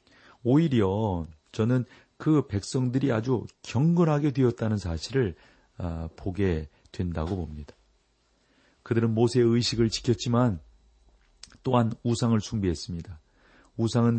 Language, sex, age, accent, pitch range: Korean, male, 40-59, native, 100-125 Hz